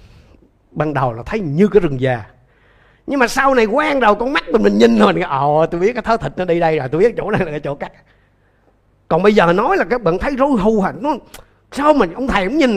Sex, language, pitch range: male, Vietnamese, 130-215 Hz